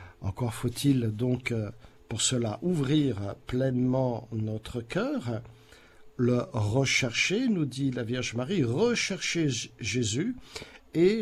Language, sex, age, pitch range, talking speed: French, male, 50-69, 110-145 Hz, 100 wpm